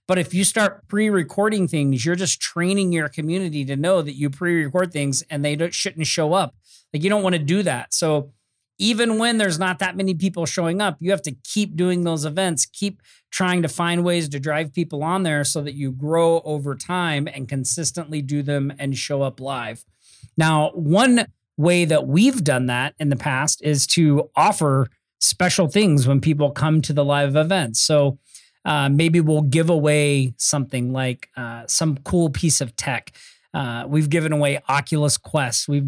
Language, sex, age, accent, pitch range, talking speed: English, male, 40-59, American, 140-170 Hz, 190 wpm